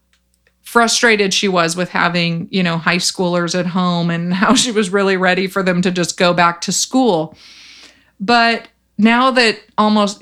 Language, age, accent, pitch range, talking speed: English, 30-49, American, 185-230 Hz, 170 wpm